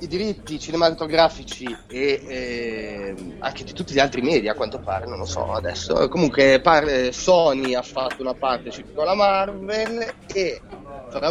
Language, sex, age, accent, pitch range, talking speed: Italian, male, 30-49, native, 120-160 Hz, 155 wpm